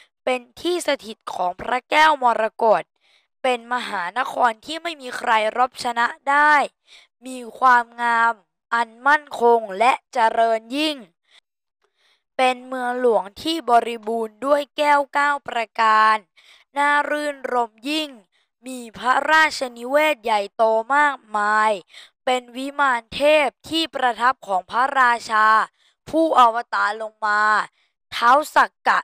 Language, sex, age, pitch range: Thai, female, 20-39, 220-285 Hz